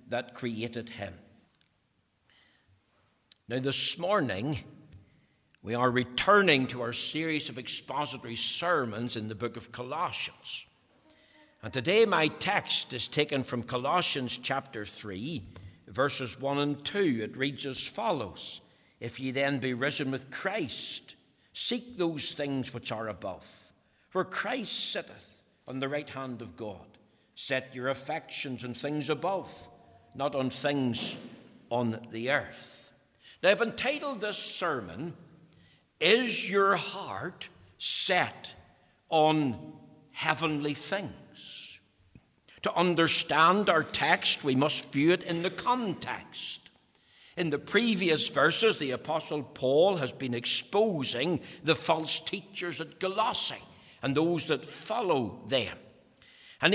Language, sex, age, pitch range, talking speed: English, male, 60-79, 120-175 Hz, 125 wpm